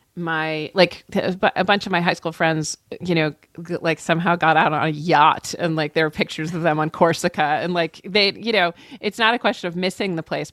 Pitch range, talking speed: 165-210 Hz, 230 wpm